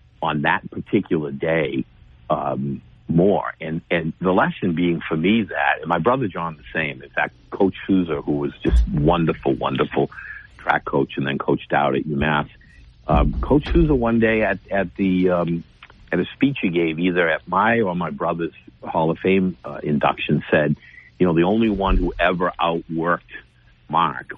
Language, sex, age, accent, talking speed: English, male, 60-79, American, 175 wpm